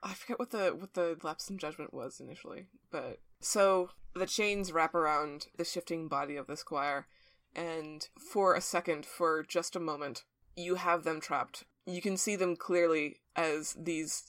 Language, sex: English, female